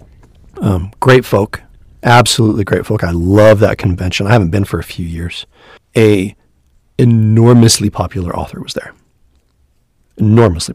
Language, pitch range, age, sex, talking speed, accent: English, 90-115 Hz, 40-59, male, 135 wpm, American